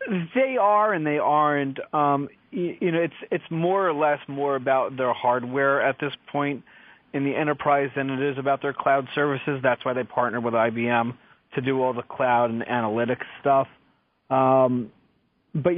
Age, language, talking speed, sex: 30-49, English, 180 wpm, male